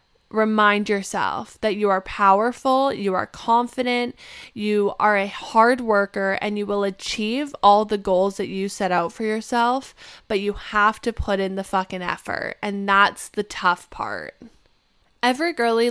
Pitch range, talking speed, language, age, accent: 200-230 Hz, 160 wpm, English, 20-39, American